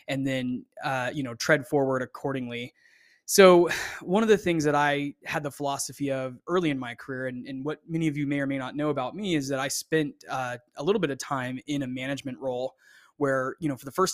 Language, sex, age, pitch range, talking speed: English, male, 20-39, 130-150 Hz, 240 wpm